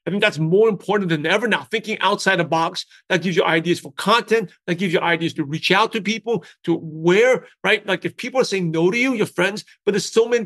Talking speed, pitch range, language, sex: 250 wpm, 165-200 Hz, English, male